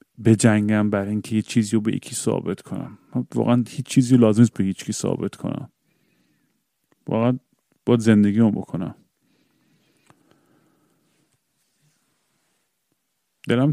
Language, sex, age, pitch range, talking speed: Persian, male, 40-59, 105-125 Hz, 115 wpm